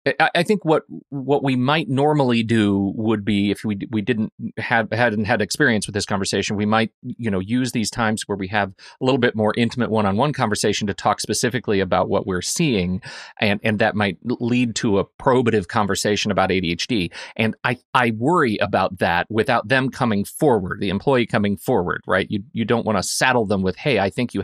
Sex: male